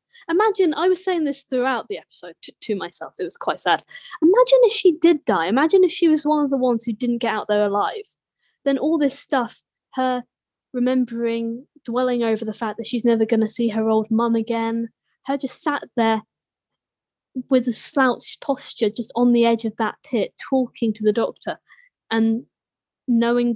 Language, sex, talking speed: English, female, 190 wpm